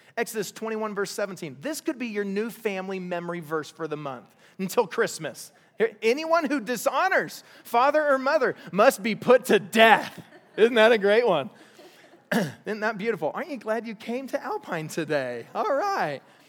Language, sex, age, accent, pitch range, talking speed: English, male, 30-49, American, 175-240 Hz, 165 wpm